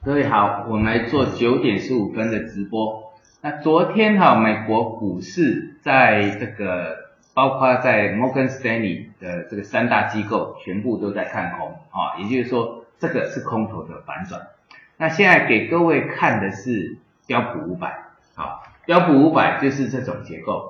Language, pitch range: Chinese, 105-135 Hz